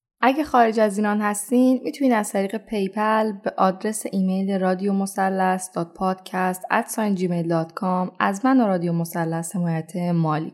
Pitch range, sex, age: 185-235 Hz, female, 10-29